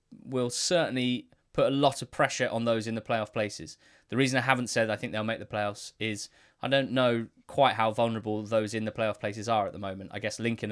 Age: 20-39